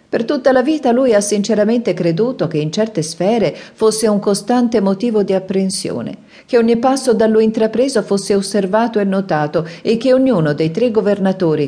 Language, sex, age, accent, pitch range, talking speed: Italian, female, 40-59, native, 150-210 Hz, 175 wpm